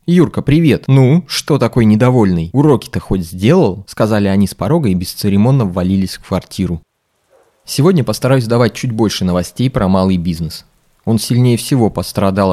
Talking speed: 150 wpm